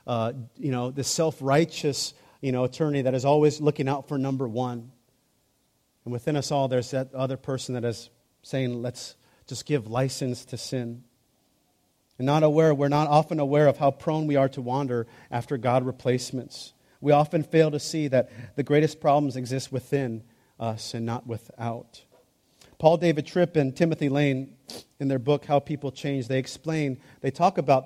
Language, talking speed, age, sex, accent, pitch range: English, 175 wpm, 40-59, male, American, 120-150 Hz